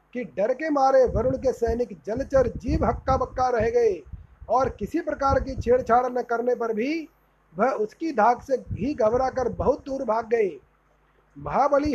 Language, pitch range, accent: Hindi, 235-275 Hz, native